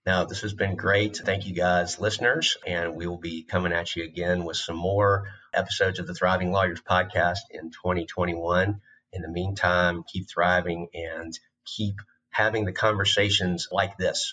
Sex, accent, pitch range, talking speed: male, American, 85-95 Hz, 170 wpm